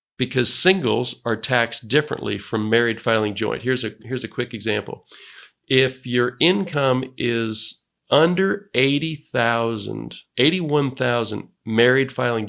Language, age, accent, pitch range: English, 40-59, American, 110-135 Hz